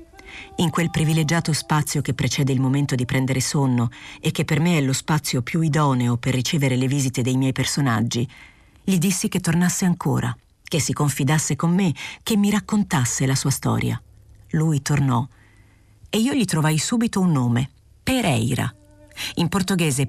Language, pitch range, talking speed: Italian, 130-175 Hz, 165 wpm